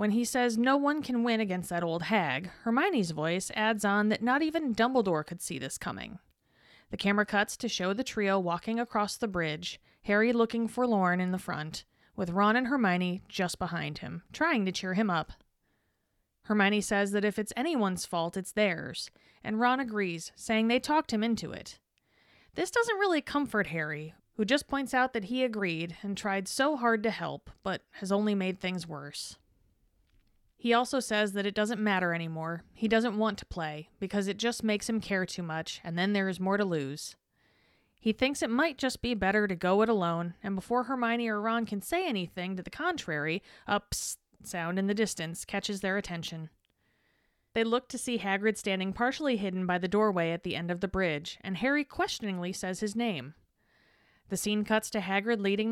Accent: American